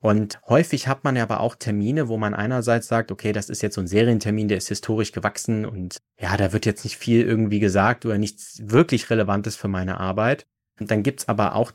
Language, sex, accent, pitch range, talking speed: German, male, German, 105-125 Hz, 230 wpm